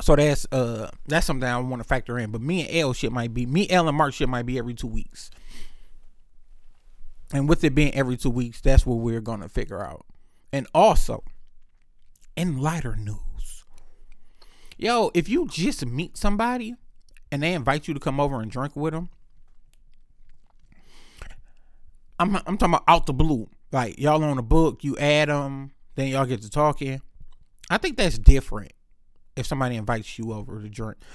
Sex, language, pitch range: male, English, 115-150 Hz